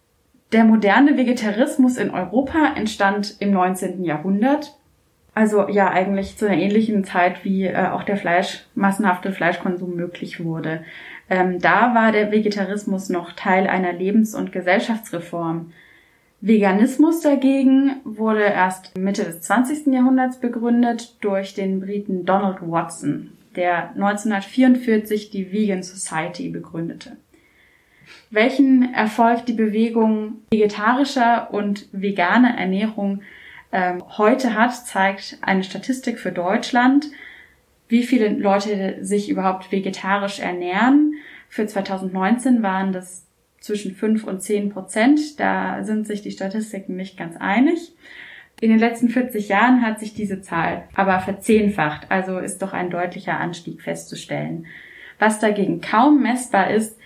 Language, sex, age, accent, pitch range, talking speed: German, female, 20-39, German, 190-235 Hz, 125 wpm